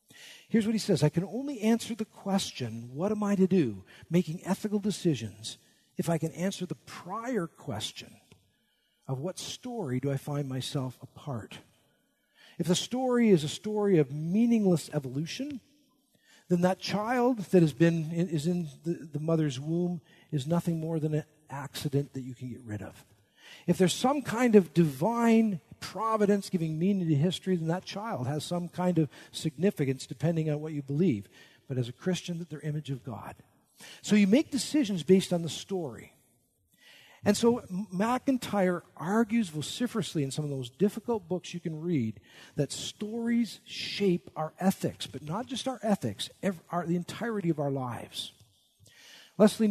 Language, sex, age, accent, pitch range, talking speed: English, male, 50-69, American, 145-205 Hz, 165 wpm